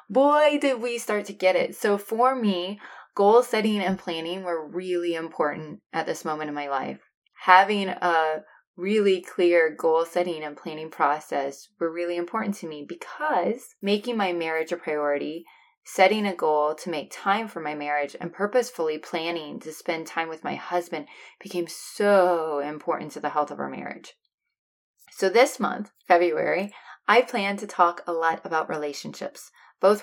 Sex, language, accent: female, English, American